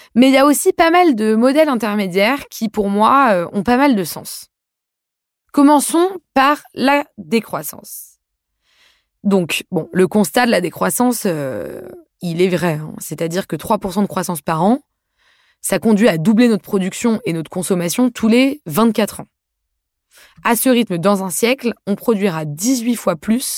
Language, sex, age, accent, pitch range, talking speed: French, female, 20-39, French, 190-260 Hz, 165 wpm